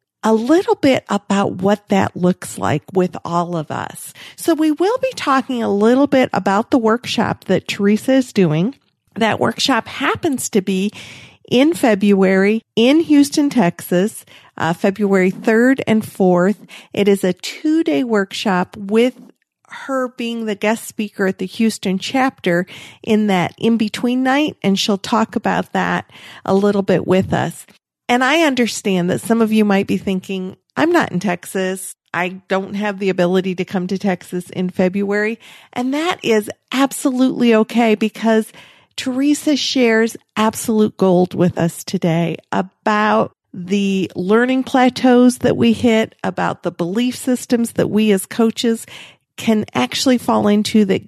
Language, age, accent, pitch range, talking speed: English, 50-69, American, 190-245 Hz, 150 wpm